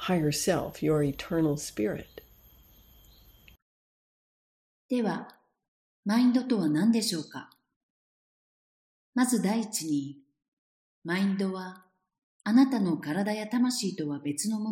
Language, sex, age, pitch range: Japanese, female, 40-59, 150-210 Hz